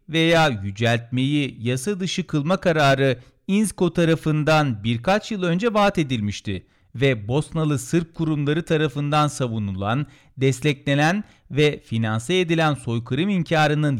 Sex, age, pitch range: male, 40-59, 130-180 Hz